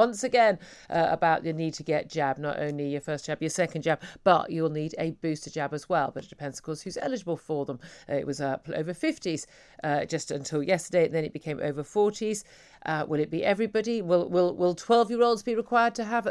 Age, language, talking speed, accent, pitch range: 40-59, English, 235 wpm, British, 150-220 Hz